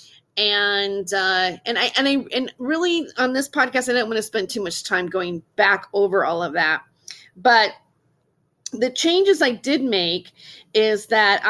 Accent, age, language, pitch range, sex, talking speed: American, 30-49, English, 185-220 Hz, female, 170 wpm